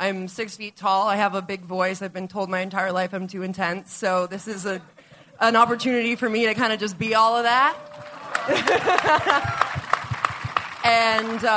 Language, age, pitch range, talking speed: English, 20-39, 170-195 Hz, 180 wpm